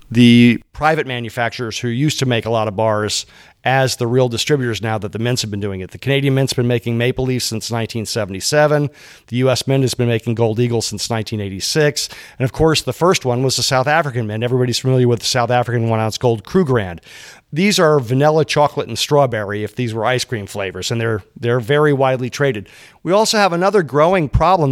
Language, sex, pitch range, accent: English, male, 115-150 Hz, American